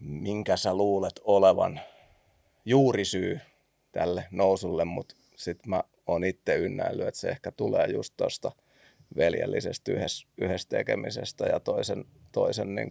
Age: 30-49